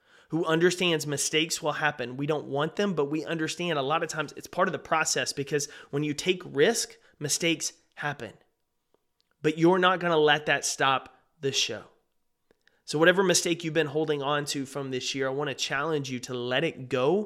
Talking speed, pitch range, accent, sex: 200 wpm, 135-165 Hz, American, male